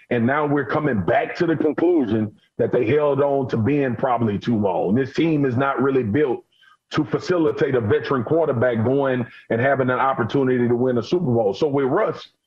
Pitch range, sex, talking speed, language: 125-150 Hz, male, 195 wpm, English